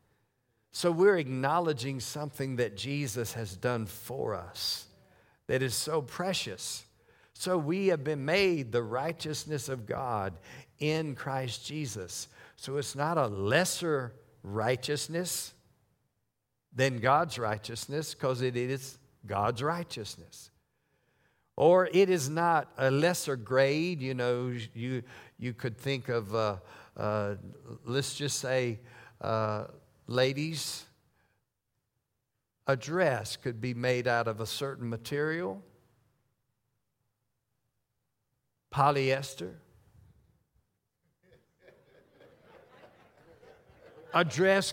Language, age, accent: English, 60-79, American